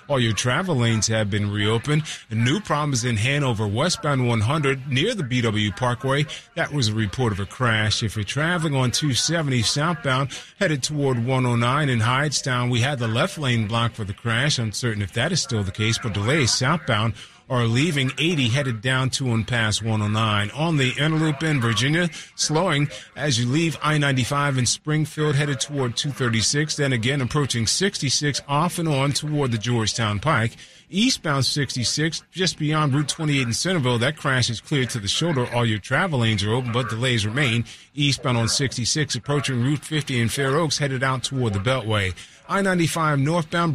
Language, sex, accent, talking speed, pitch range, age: English, male, American, 180 wpm, 115-150 Hz, 30-49